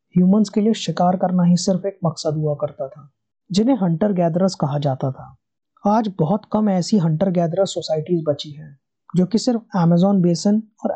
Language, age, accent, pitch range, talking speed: Hindi, 30-49, native, 150-200 Hz, 180 wpm